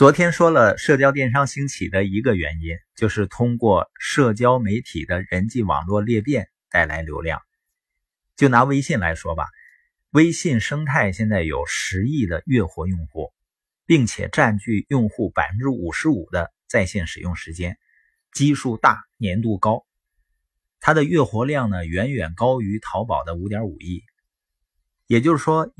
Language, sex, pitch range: Chinese, male, 100-140 Hz